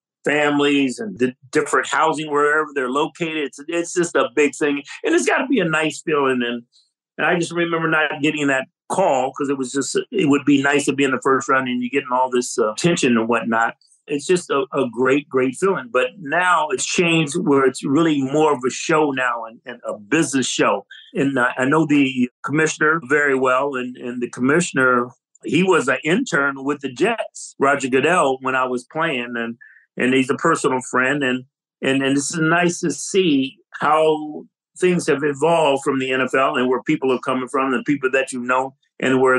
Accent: American